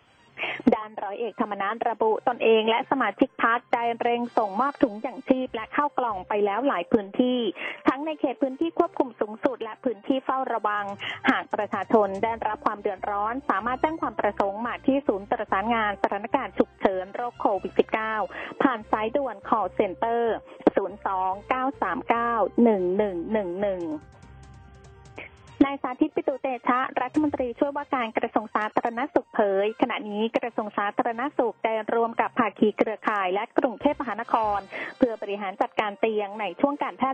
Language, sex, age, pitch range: Thai, female, 20-39, 215-280 Hz